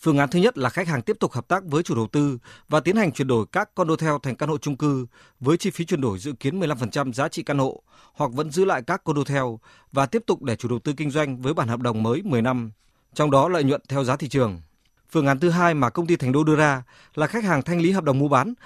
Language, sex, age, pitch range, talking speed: Vietnamese, male, 20-39, 125-160 Hz, 285 wpm